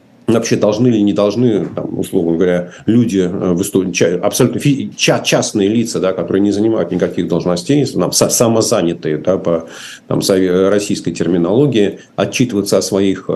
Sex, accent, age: male, native, 50-69